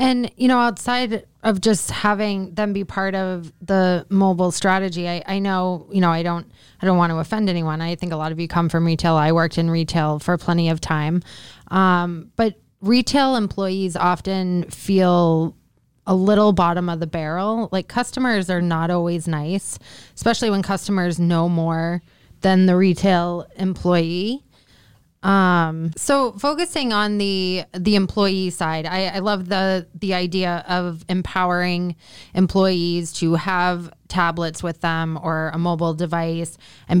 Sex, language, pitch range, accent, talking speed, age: female, English, 170-195 Hz, American, 160 wpm, 20-39